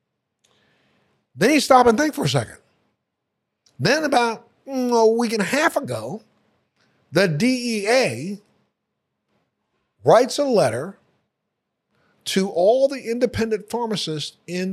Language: English